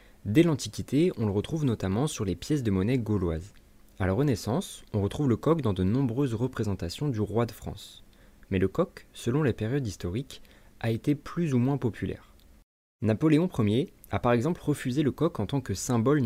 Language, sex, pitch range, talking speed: French, male, 100-140 Hz, 190 wpm